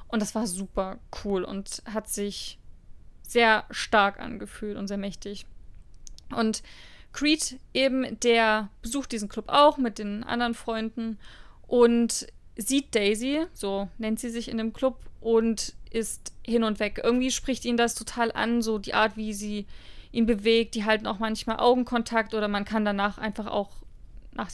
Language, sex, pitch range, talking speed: German, female, 210-235 Hz, 160 wpm